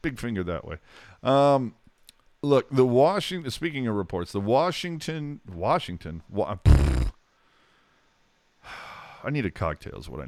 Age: 40-59